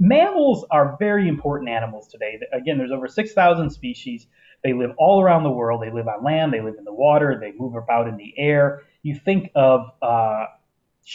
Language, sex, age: English, male, 30-49